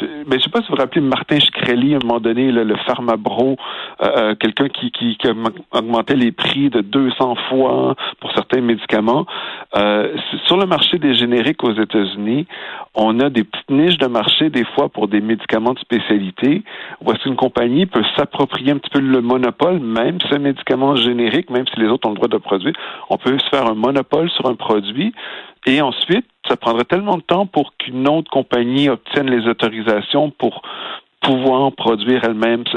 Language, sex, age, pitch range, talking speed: French, male, 50-69, 110-140 Hz, 190 wpm